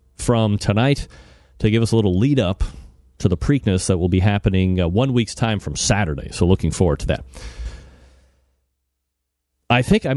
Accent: American